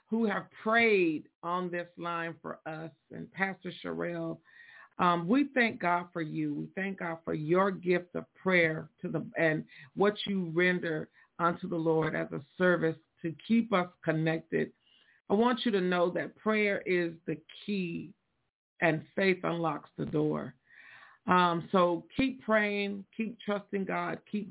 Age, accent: 50-69, American